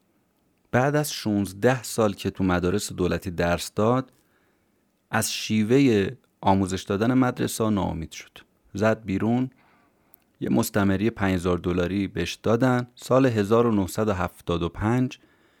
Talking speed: 105 wpm